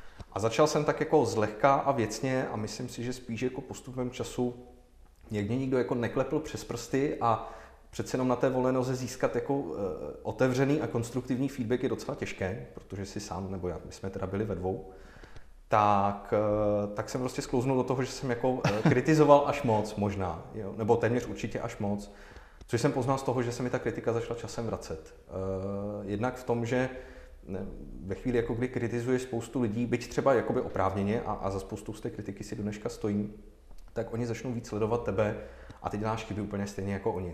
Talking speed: 200 wpm